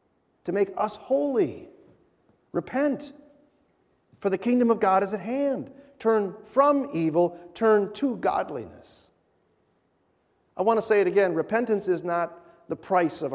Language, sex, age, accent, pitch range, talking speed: English, male, 40-59, American, 130-205 Hz, 140 wpm